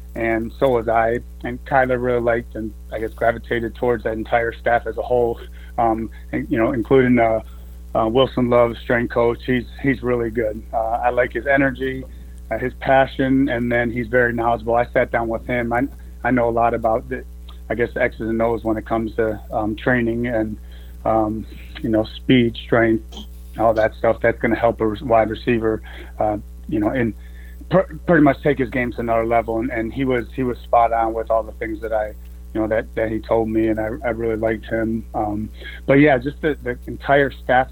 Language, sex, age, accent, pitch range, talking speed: English, male, 30-49, American, 110-125 Hz, 215 wpm